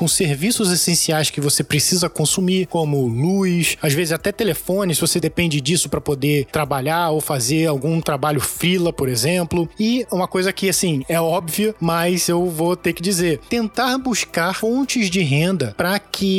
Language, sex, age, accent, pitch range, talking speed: Portuguese, male, 20-39, Brazilian, 160-210 Hz, 170 wpm